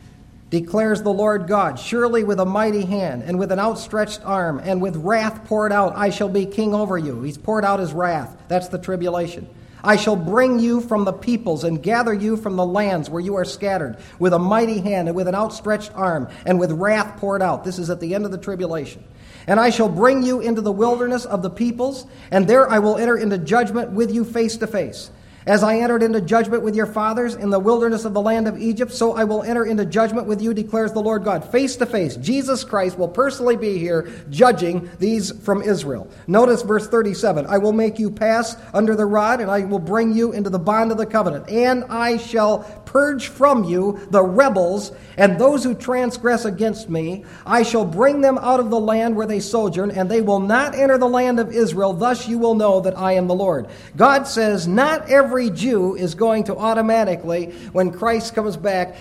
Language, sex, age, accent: English, male, 50-69, American